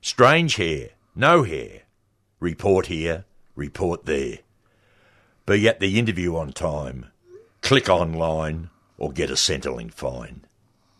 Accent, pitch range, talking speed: Australian, 90-110 Hz, 115 wpm